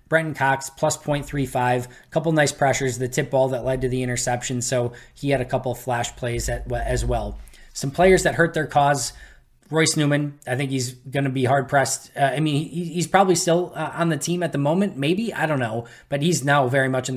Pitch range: 125-145 Hz